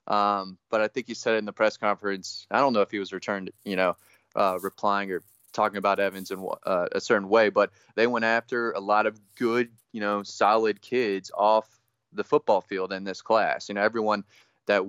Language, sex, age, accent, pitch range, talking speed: English, male, 20-39, American, 95-110 Hz, 215 wpm